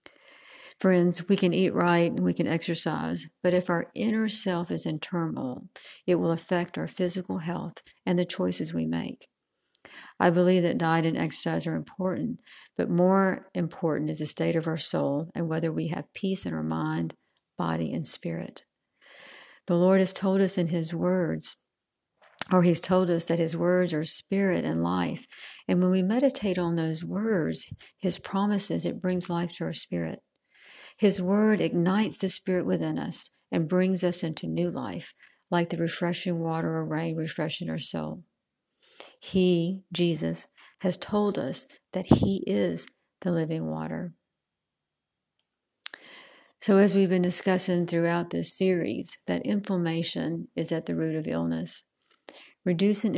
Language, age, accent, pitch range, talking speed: English, 50-69, American, 160-185 Hz, 160 wpm